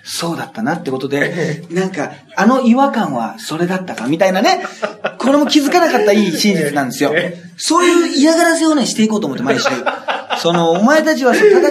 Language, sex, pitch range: Japanese, male, 190-275 Hz